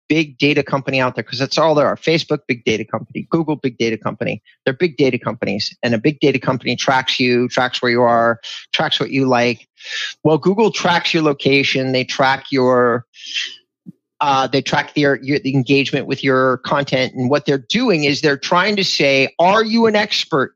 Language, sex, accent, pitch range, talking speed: English, male, American, 125-155 Hz, 200 wpm